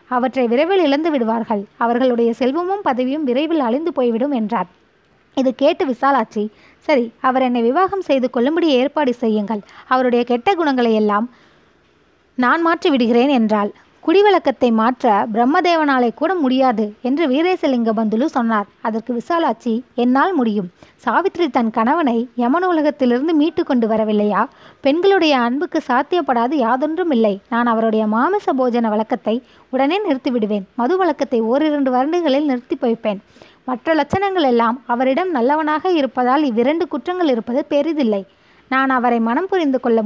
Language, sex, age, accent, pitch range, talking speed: Tamil, female, 20-39, native, 235-310 Hz, 125 wpm